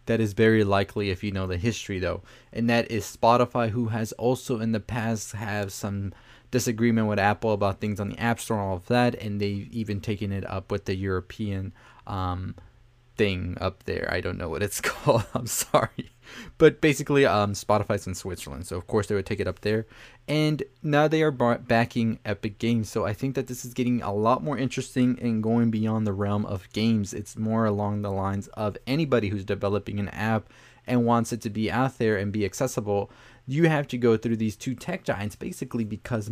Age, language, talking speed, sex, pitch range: 20-39, English, 215 wpm, male, 105-120 Hz